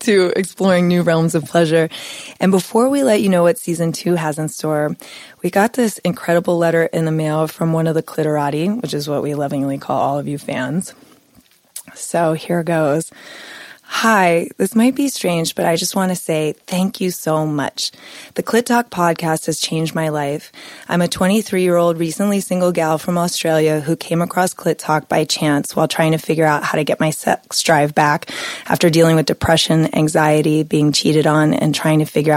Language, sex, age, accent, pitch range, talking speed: English, female, 20-39, American, 155-175 Hz, 195 wpm